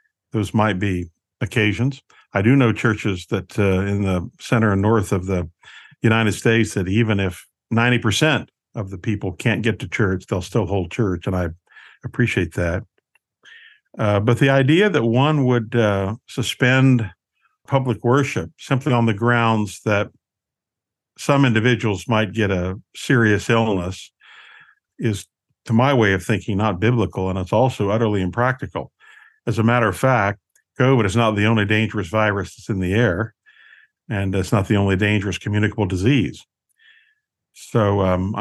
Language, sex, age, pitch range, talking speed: English, male, 50-69, 100-125 Hz, 155 wpm